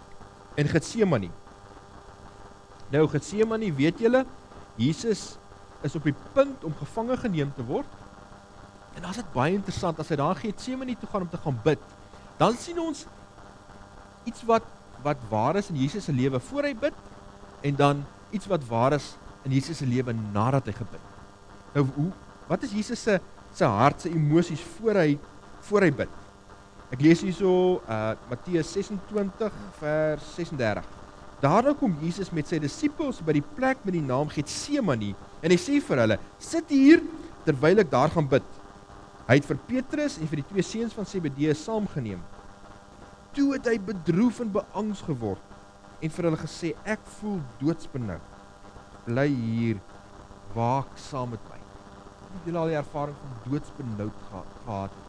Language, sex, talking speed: English, male, 160 wpm